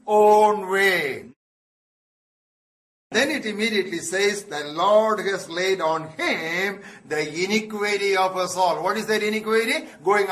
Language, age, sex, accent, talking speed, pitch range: English, 60-79, male, Indian, 130 wpm, 170-215 Hz